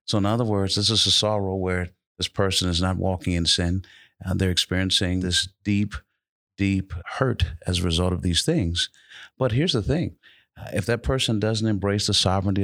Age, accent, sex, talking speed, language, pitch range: 50-69, American, male, 190 wpm, English, 85-100 Hz